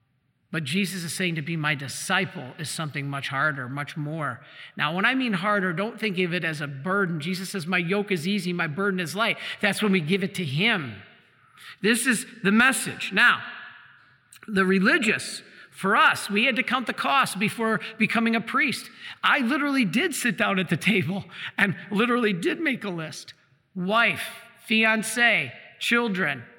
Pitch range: 165-220 Hz